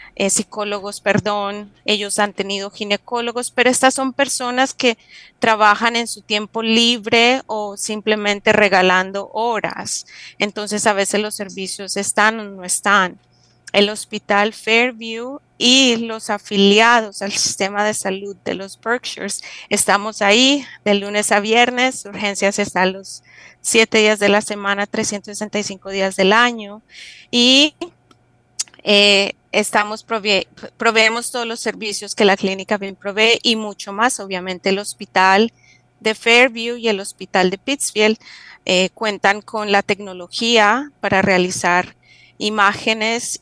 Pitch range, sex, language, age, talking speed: 195-230 Hz, female, English, 30-49, 130 wpm